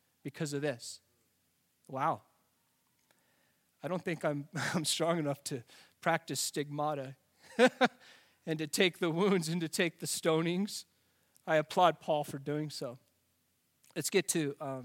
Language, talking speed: English, 135 wpm